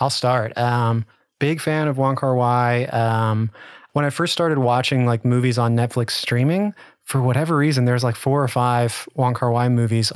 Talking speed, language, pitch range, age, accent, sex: 190 wpm, English, 120-140 Hz, 20-39, American, male